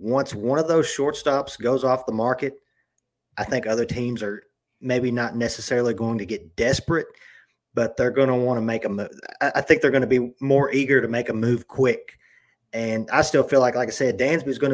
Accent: American